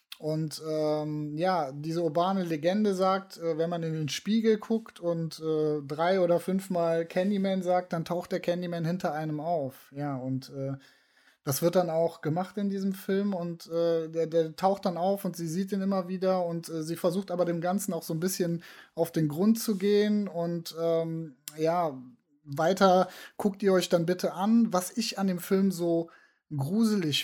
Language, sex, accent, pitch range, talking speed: German, male, German, 155-180 Hz, 185 wpm